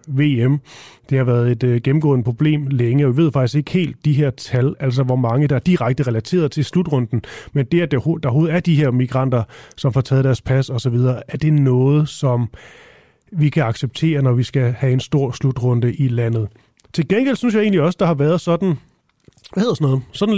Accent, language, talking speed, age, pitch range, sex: native, Danish, 210 wpm, 30-49, 130-160 Hz, male